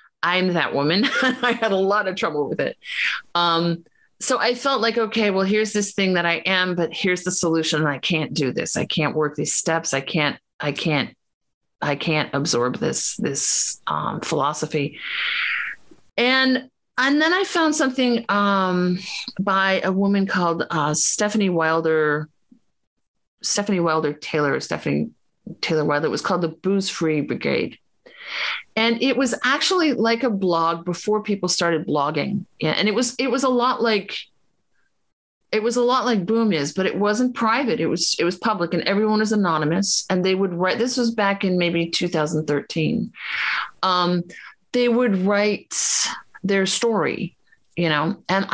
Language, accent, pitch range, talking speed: English, American, 165-225 Hz, 165 wpm